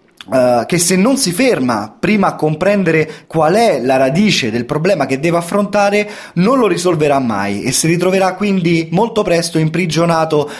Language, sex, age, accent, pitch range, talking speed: Italian, male, 30-49, native, 140-205 Hz, 160 wpm